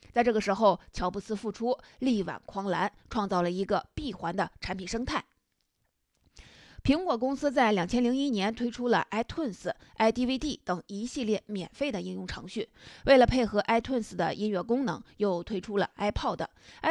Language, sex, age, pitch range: Chinese, female, 20-39, 195-250 Hz